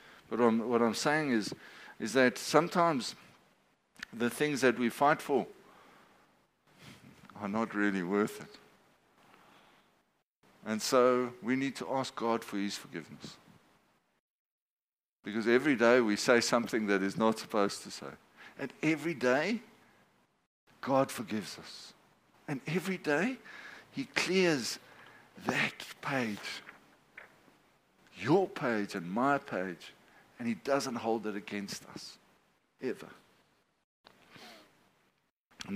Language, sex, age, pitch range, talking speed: English, male, 60-79, 110-145 Hz, 115 wpm